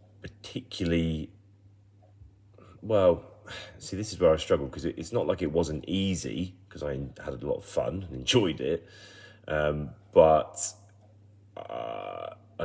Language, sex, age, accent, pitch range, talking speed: English, male, 30-49, British, 65-100 Hz, 135 wpm